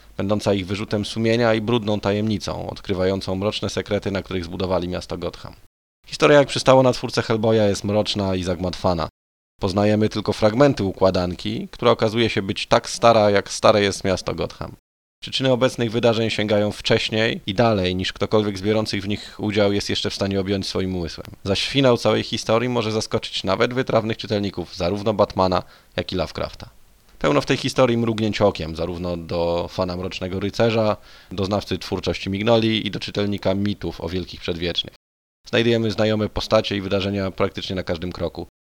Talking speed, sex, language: 165 wpm, male, Polish